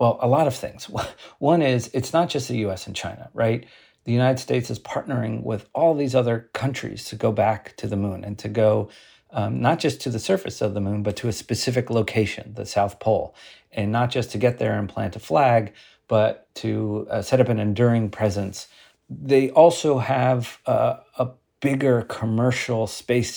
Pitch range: 105-130 Hz